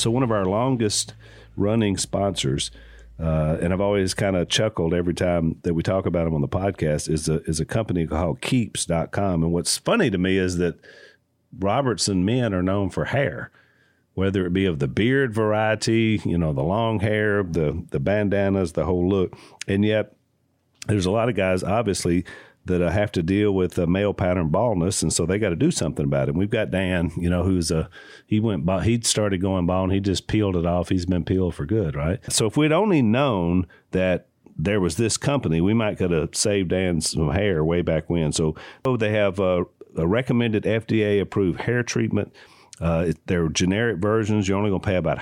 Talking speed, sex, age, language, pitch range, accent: 210 wpm, male, 50-69, English, 85-105 Hz, American